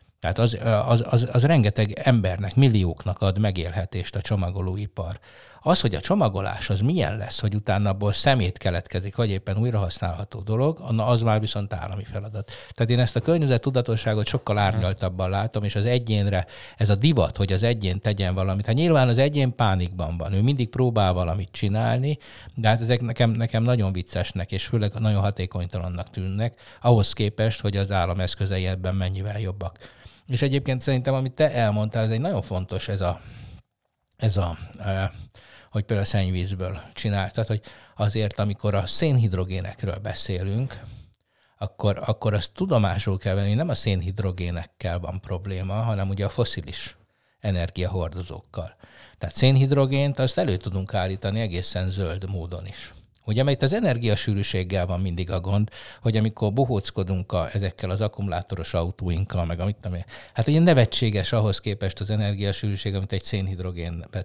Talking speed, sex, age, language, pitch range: 155 wpm, male, 60-79, Hungarian, 95-115 Hz